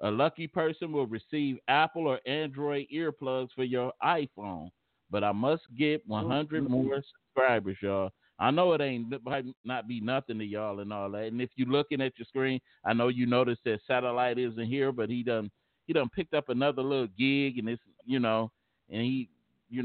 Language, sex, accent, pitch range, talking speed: English, male, American, 110-135 Hz, 200 wpm